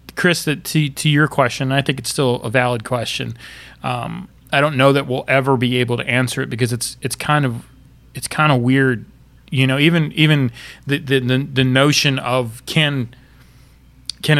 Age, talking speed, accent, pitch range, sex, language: 30-49, 185 wpm, American, 125-145 Hz, male, English